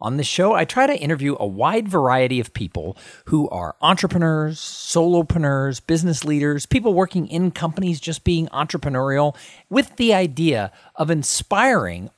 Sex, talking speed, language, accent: male, 150 wpm, English, American